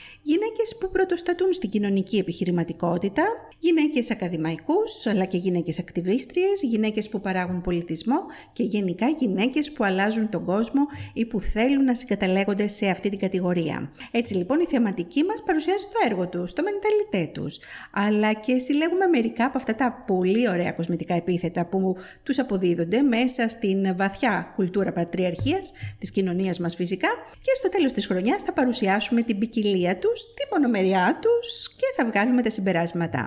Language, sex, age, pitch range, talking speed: Greek, female, 50-69, 185-295 Hz, 155 wpm